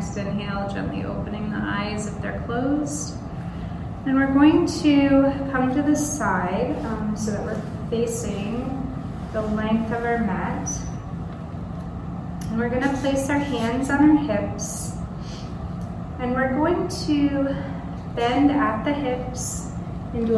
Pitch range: 215-255 Hz